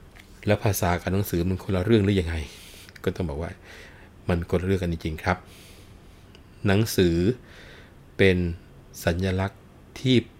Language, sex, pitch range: Thai, male, 85-100 Hz